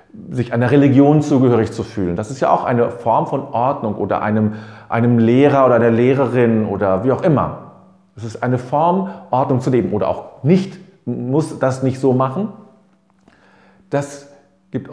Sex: male